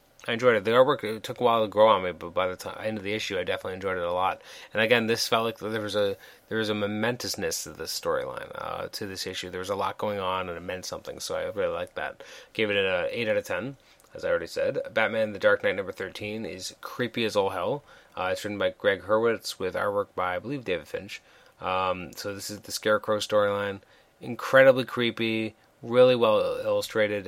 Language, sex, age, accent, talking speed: English, male, 30-49, American, 240 wpm